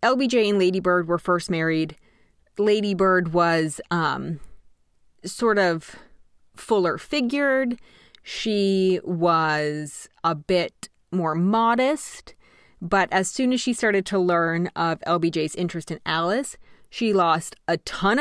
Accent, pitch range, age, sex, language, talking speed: American, 170-230 Hz, 30-49, female, English, 125 wpm